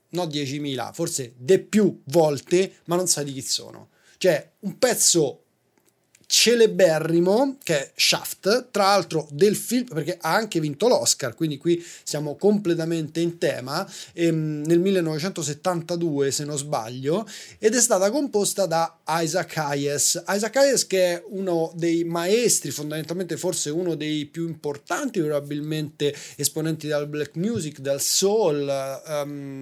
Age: 20-39